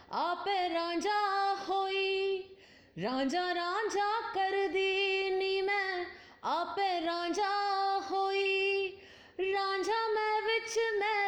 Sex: female